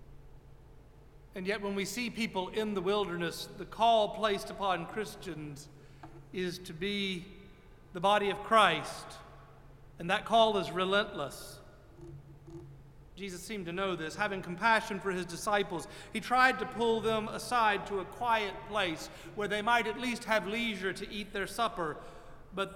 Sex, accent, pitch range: male, American, 175-220 Hz